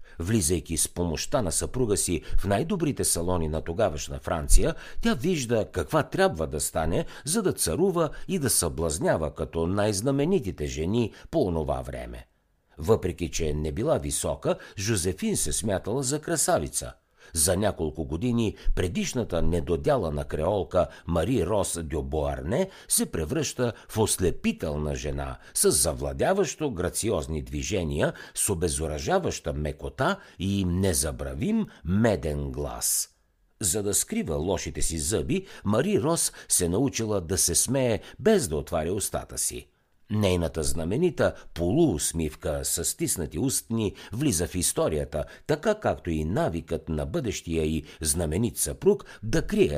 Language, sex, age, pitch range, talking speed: Bulgarian, male, 60-79, 75-115 Hz, 125 wpm